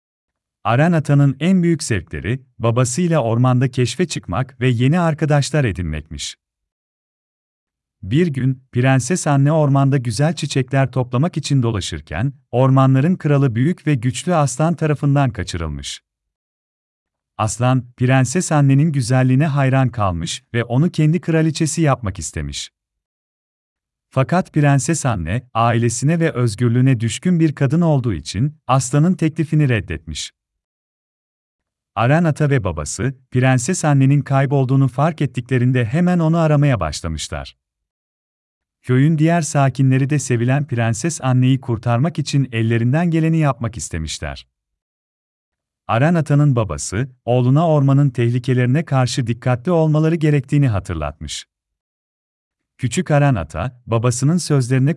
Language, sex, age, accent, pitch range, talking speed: Turkish, male, 40-59, native, 100-150 Hz, 105 wpm